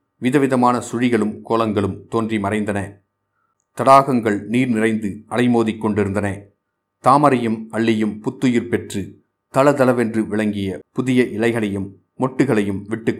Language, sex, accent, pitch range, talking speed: Tamil, male, native, 100-125 Hz, 85 wpm